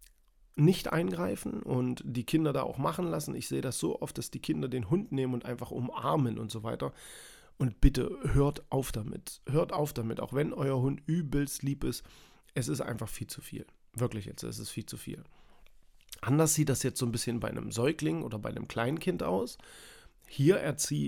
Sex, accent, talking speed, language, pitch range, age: male, German, 200 wpm, German, 115-140 Hz, 40-59